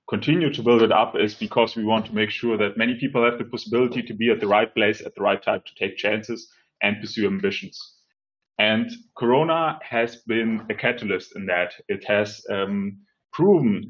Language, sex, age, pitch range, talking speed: English, male, 30-49, 105-130 Hz, 200 wpm